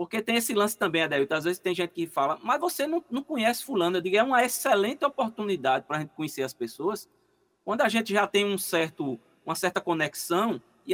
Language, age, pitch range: Portuguese, 20-39, 155-215 Hz